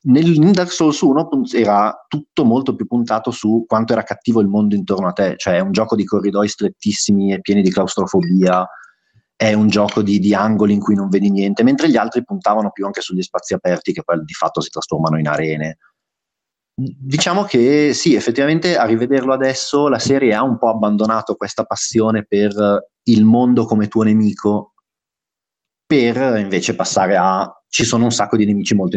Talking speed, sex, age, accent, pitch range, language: 185 wpm, male, 30-49, native, 100-130 Hz, Italian